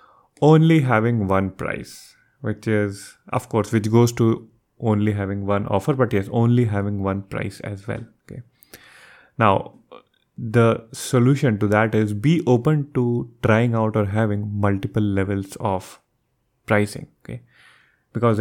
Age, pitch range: 20-39, 105-125 Hz